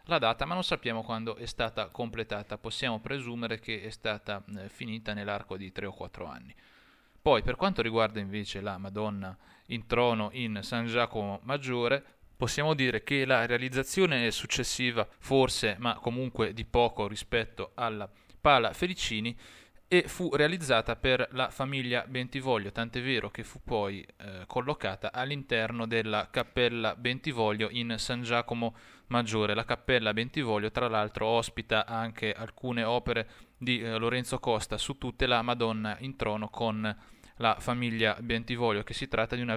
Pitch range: 110-130 Hz